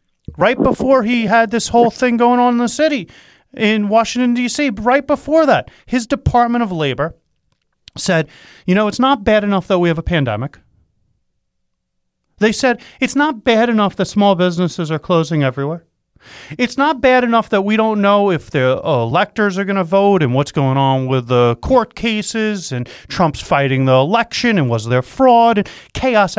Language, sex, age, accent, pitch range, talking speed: English, male, 40-59, American, 175-255 Hz, 180 wpm